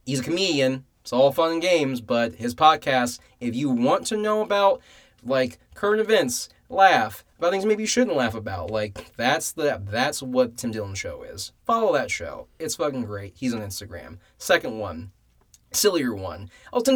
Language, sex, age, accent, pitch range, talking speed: English, male, 20-39, American, 115-175 Hz, 185 wpm